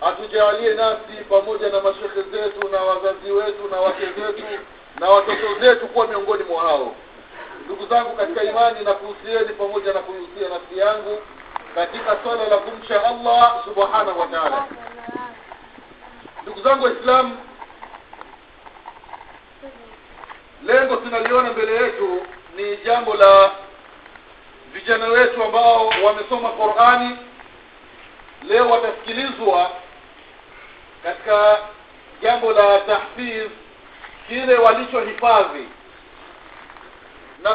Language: Swahili